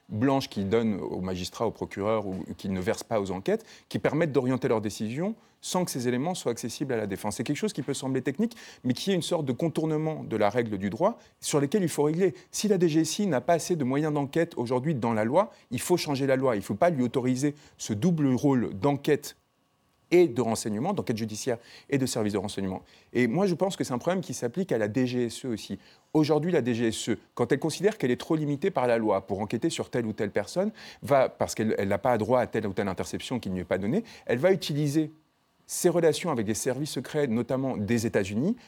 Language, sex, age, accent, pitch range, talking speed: French, male, 30-49, French, 115-165 Hz, 240 wpm